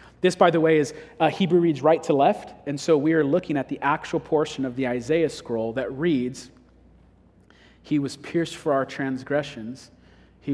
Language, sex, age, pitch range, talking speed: English, male, 40-59, 125-150 Hz, 190 wpm